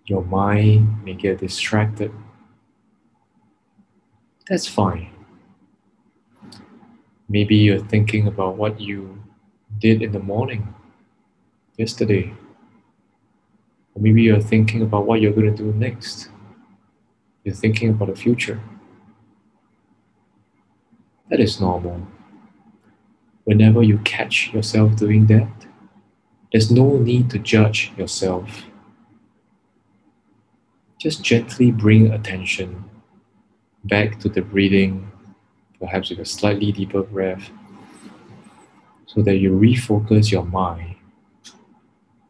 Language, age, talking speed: English, 20-39, 95 wpm